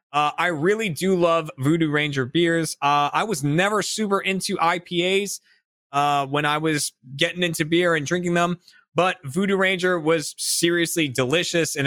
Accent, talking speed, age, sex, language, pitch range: American, 160 wpm, 20-39, male, English, 135-175 Hz